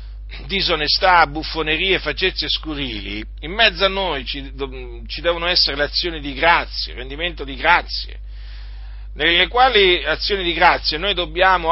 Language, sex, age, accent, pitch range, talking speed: Italian, male, 50-69, native, 140-185 Hz, 140 wpm